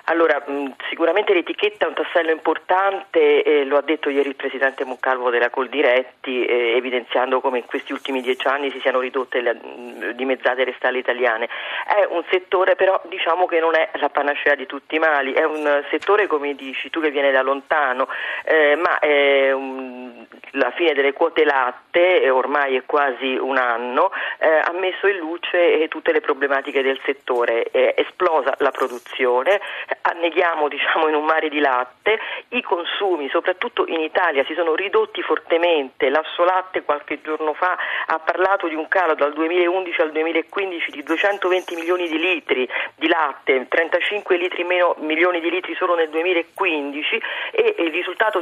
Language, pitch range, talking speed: Italian, 140-185 Hz, 170 wpm